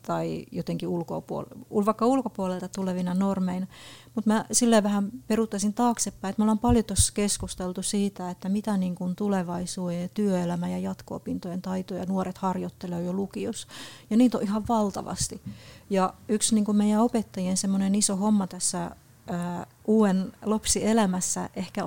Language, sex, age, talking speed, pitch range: Finnish, female, 30-49, 140 wpm, 180-215 Hz